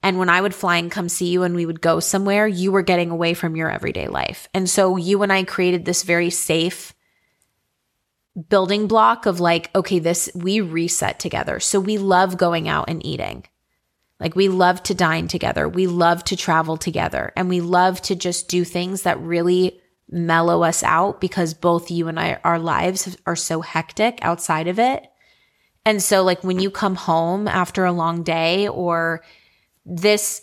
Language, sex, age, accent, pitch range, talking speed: English, female, 20-39, American, 170-200 Hz, 190 wpm